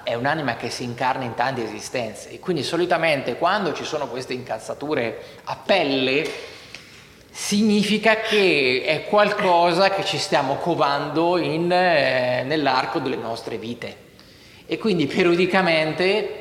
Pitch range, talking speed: 135-200 Hz, 130 wpm